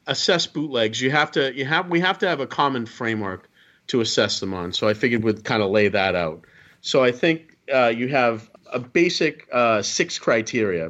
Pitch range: 115-160 Hz